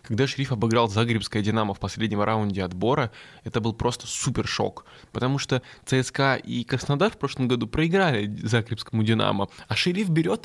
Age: 20-39